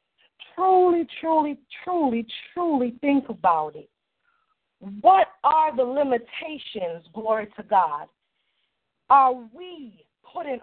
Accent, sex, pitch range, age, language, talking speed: American, female, 225-315 Hz, 40-59, English, 95 wpm